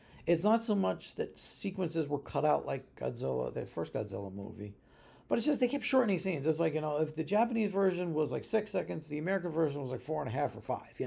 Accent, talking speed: American, 250 wpm